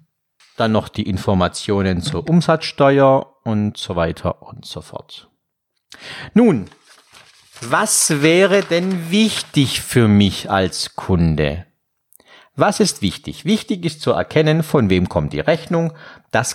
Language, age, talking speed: German, 50-69, 125 wpm